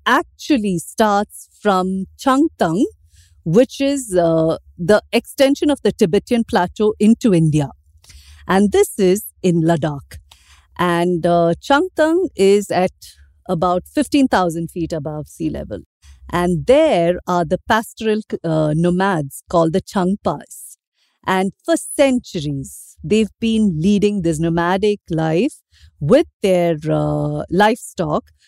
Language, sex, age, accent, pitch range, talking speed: English, female, 50-69, Indian, 155-210 Hz, 115 wpm